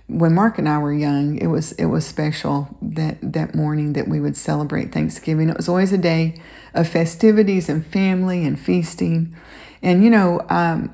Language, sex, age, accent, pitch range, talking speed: English, female, 40-59, American, 160-185 Hz, 185 wpm